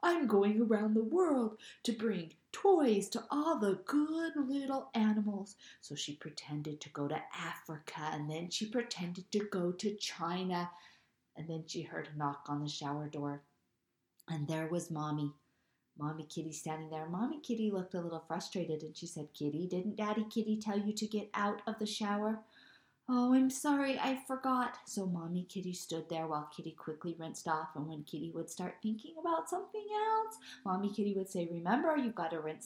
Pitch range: 165-230 Hz